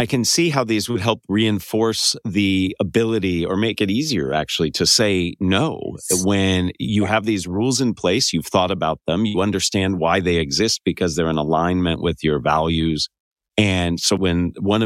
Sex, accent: male, American